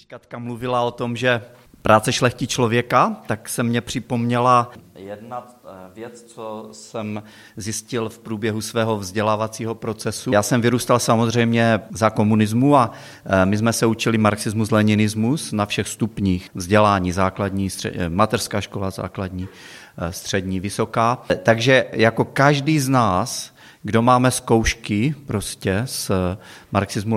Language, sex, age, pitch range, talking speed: Czech, male, 40-59, 105-120 Hz, 125 wpm